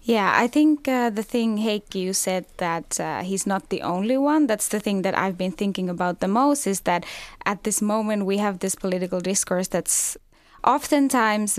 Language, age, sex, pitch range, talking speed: Finnish, 10-29, female, 190-230 Hz, 195 wpm